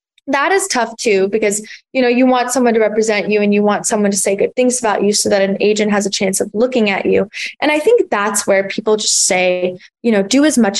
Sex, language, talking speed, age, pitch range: female, English, 260 wpm, 20-39, 195-245 Hz